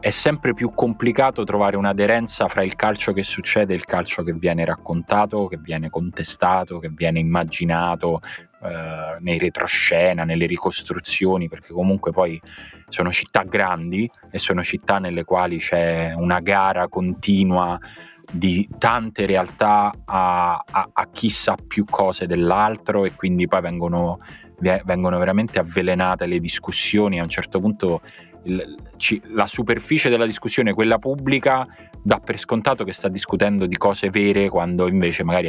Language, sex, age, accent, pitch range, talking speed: Italian, male, 20-39, native, 85-105 Hz, 140 wpm